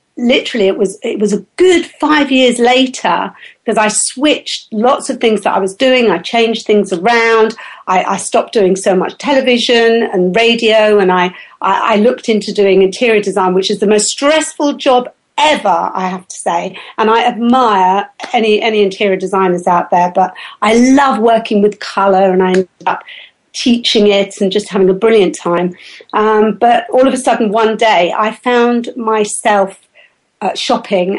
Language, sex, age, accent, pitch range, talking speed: English, female, 50-69, British, 200-255 Hz, 180 wpm